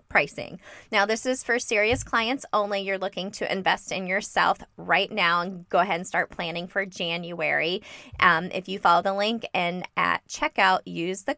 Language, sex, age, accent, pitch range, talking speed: English, female, 20-39, American, 170-210 Hz, 185 wpm